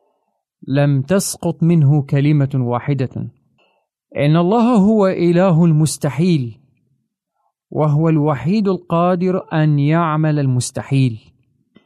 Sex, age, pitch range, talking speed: male, 30-49, 140-180 Hz, 80 wpm